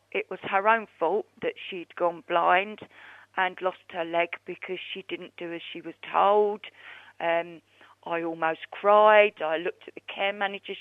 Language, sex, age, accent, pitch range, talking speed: English, female, 40-59, British, 185-225 Hz, 170 wpm